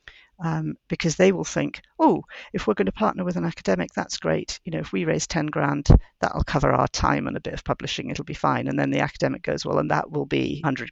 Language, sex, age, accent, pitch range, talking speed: English, female, 40-59, British, 150-190 Hz, 260 wpm